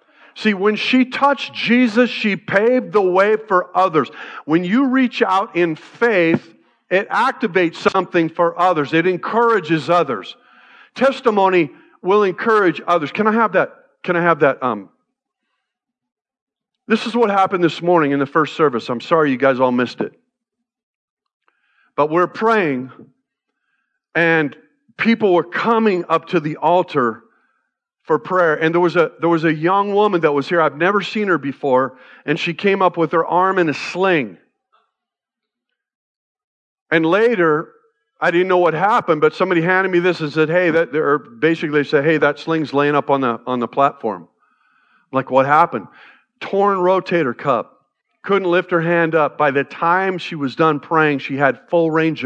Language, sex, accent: English, male, American